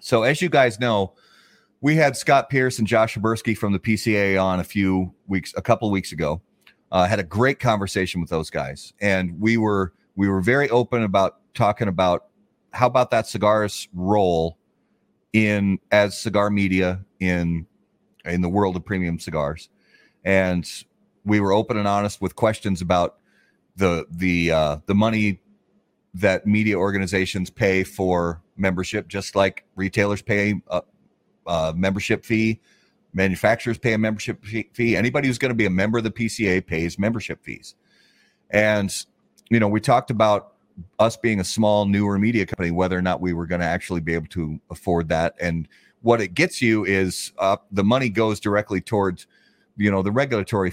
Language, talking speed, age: English, 175 wpm, 30-49